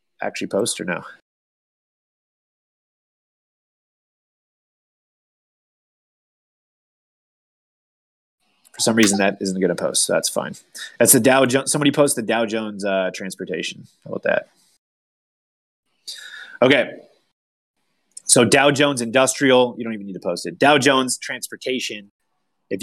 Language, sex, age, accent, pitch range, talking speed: English, male, 30-49, American, 100-125 Hz, 120 wpm